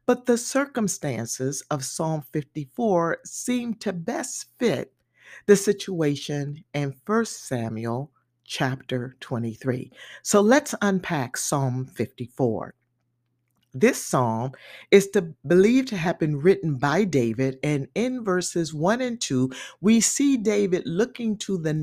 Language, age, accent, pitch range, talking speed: English, 50-69, American, 135-205 Hz, 120 wpm